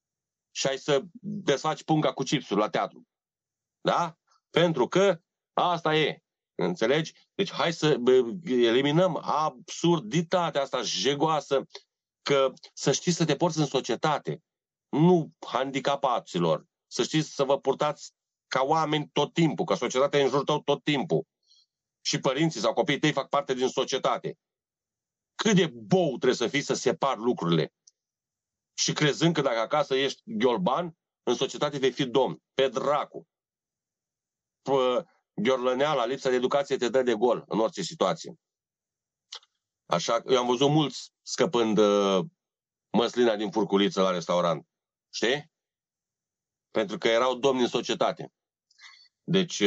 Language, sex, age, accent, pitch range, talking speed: Romanian, male, 40-59, native, 125-165 Hz, 140 wpm